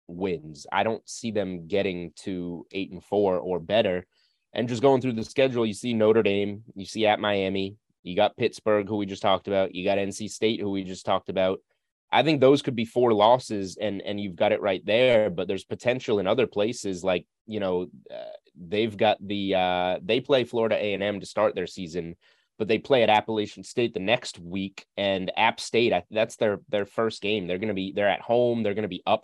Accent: American